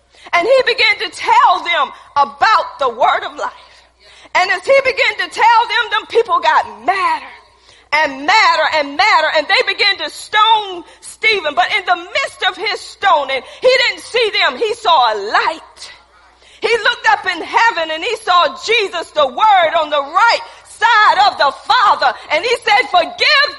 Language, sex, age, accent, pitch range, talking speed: English, female, 40-59, American, 300-435 Hz, 175 wpm